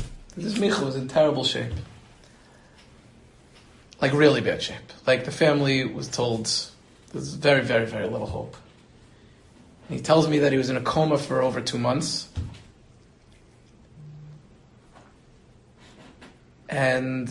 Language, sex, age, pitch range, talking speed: English, male, 30-49, 130-160 Hz, 125 wpm